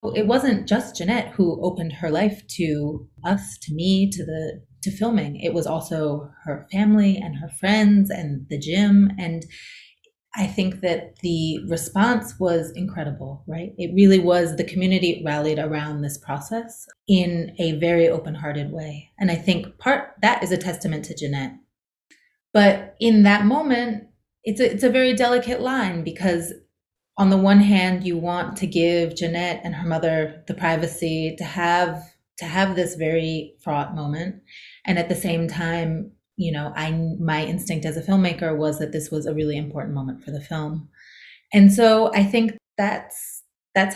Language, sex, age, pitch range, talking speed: English, female, 30-49, 160-200 Hz, 170 wpm